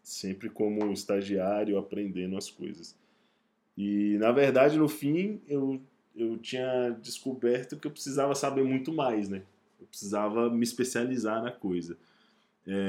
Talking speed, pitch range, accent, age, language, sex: 135 wpm, 95-115 Hz, Brazilian, 20-39, Portuguese, male